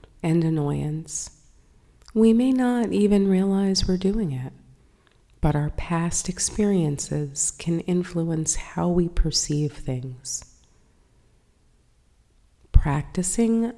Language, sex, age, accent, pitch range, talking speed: English, female, 30-49, American, 150-185 Hz, 90 wpm